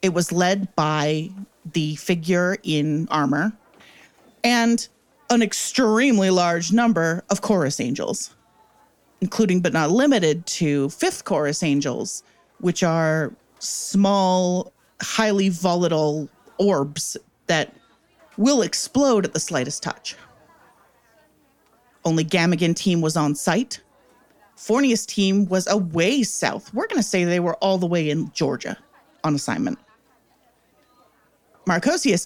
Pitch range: 155-210 Hz